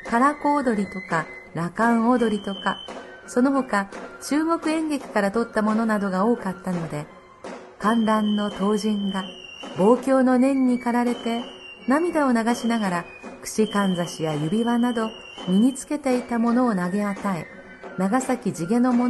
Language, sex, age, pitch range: Japanese, female, 50-69, 200-260 Hz